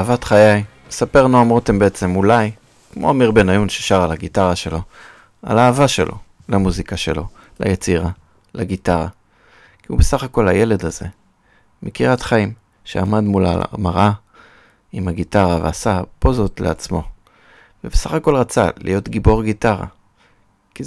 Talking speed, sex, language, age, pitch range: 125 wpm, male, Hebrew, 30-49, 90-110 Hz